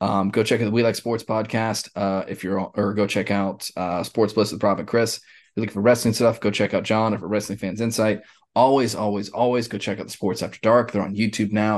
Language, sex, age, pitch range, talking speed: English, male, 20-39, 100-115 Hz, 270 wpm